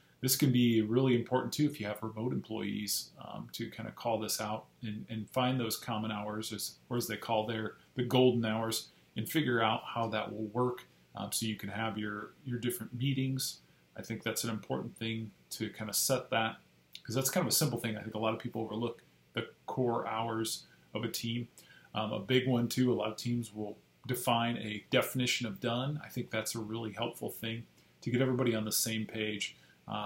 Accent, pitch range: American, 110-120 Hz